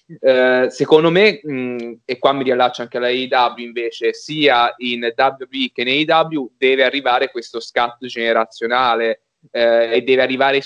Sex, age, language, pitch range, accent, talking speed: male, 20-39, Italian, 115-130 Hz, native, 150 wpm